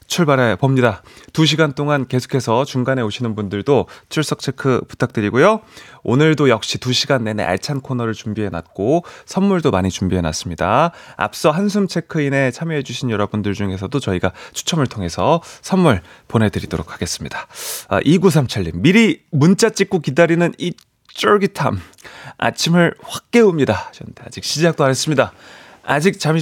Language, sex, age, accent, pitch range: Korean, male, 30-49, native, 105-165 Hz